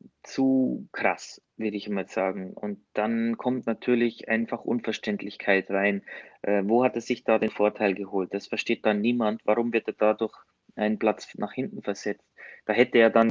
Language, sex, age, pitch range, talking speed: German, male, 20-39, 105-120 Hz, 175 wpm